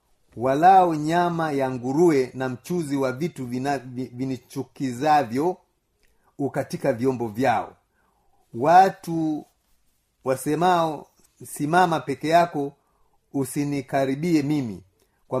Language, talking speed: Swahili, 80 wpm